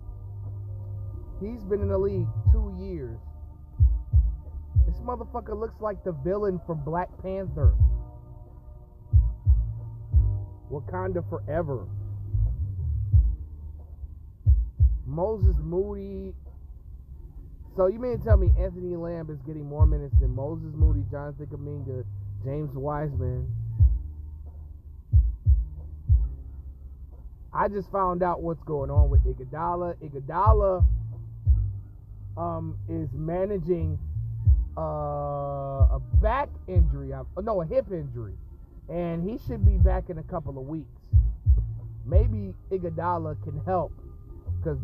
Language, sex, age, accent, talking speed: English, male, 30-49, American, 100 wpm